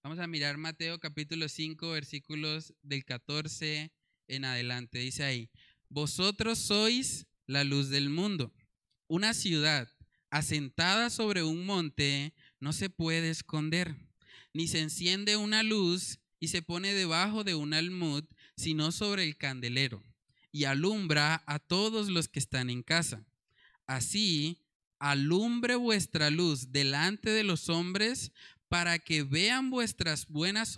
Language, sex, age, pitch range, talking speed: Spanish, male, 20-39, 140-185 Hz, 130 wpm